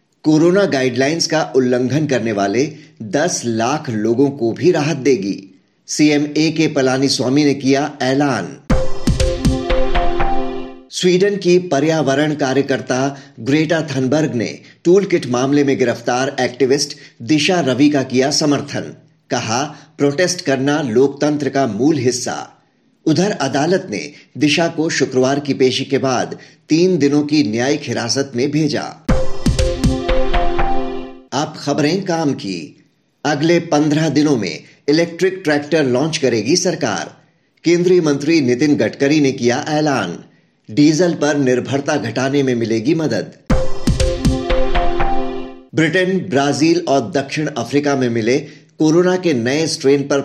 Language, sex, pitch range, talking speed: Hindi, male, 130-155 Hz, 120 wpm